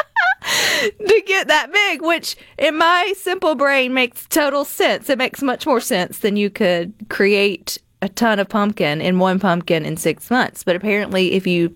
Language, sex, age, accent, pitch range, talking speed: English, female, 30-49, American, 170-225 Hz, 180 wpm